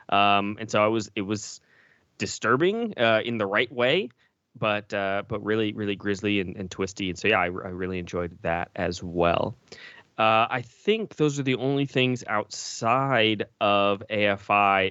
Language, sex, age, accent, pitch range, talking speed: English, male, 20-39, American, 95-120 Hz, 175 wpm